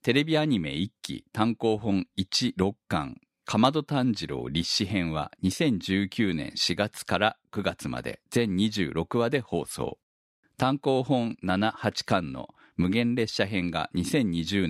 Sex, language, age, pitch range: male, Japanese, 50-69, 90-120 Hz